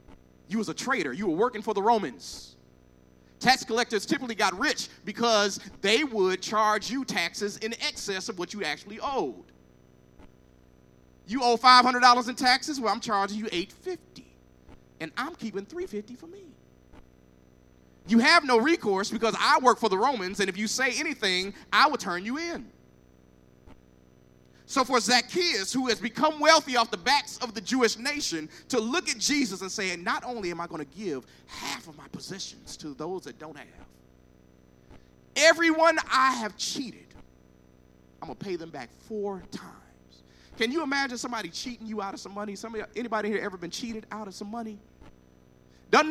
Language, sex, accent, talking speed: English, male, American, 175 wpm